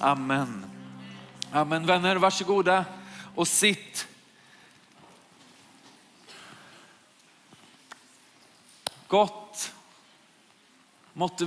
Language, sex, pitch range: Swedish, male, 145-190 Hz